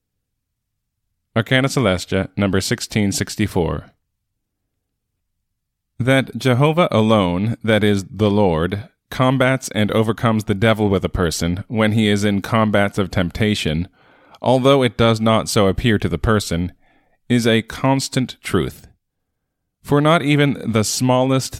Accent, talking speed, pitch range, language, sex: American, 120 wpm, 95-115 Hz, English, male